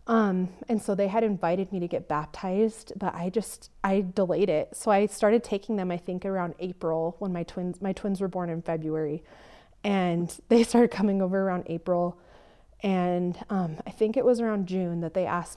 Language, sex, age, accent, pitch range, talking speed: English, female, 20-39, American, 175-215 Hz, 200 wpm